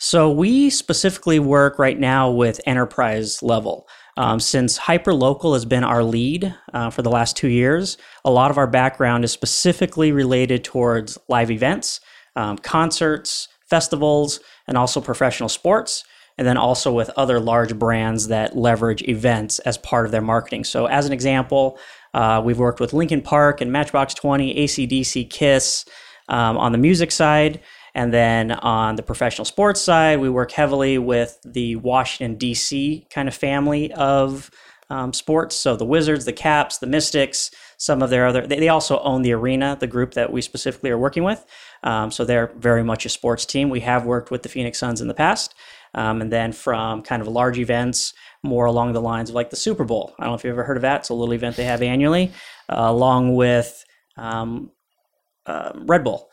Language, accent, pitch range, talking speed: English, American, 120-145 Hz, 190 wpm